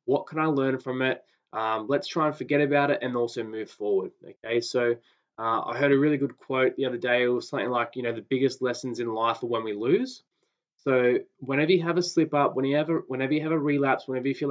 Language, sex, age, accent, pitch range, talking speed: English, male, 20-39, Australian, 120-145 Hz, 260 wpm